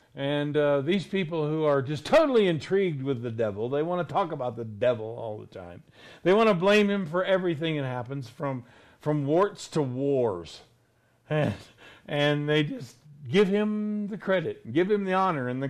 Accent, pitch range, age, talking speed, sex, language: American, 120-170 Hz, 50-69, 190 wpm, male, English